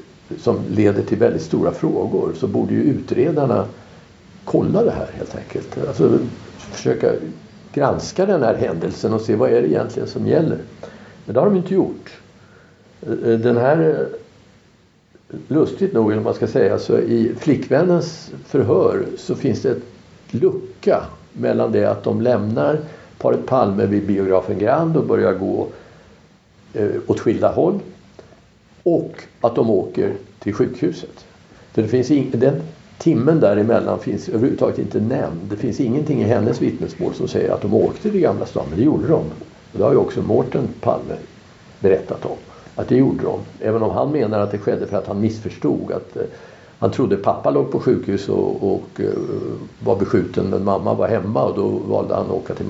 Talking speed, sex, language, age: 160 wpm, male, Swedish, 60-79